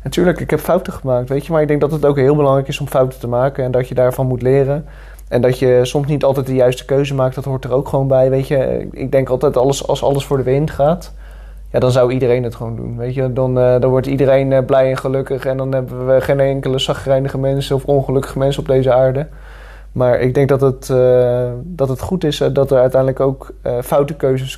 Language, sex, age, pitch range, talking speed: Dutch, male, 20-39, 125-140 Hz, 235 wpm